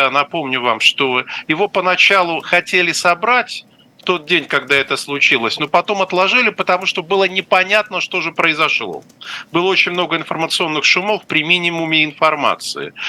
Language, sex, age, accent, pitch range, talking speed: Russian, male, 50-69, native, 145-200 Hz, 140 wpm